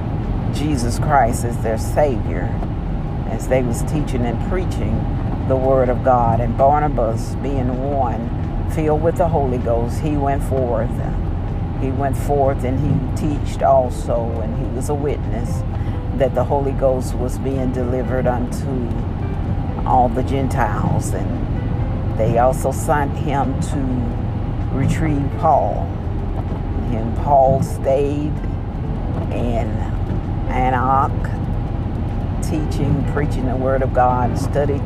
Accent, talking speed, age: American, 120 wpm, 50-69